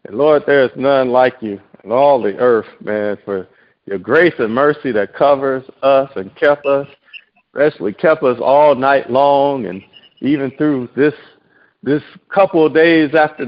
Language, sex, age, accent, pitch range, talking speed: English, male, 50-69, American, 125-155 Hz, 165 wpm